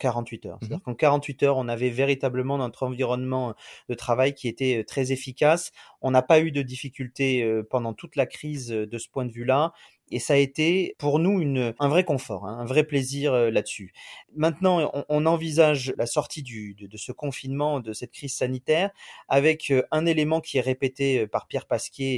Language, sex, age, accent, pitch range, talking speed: French, male, 30-49, French, 130-155 Hz, 190 wpm